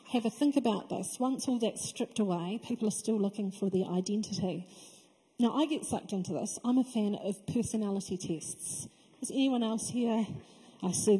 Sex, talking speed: female, 190 wpm